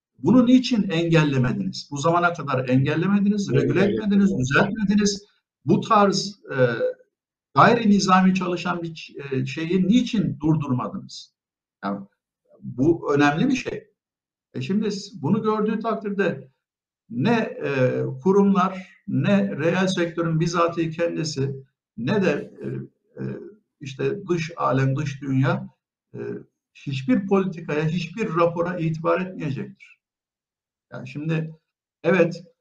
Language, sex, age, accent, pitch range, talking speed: Turkish, male, 60-79, native, 145-195 Hz, 95 wpm